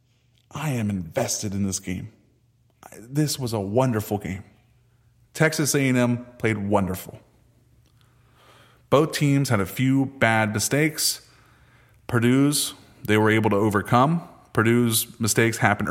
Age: 30-49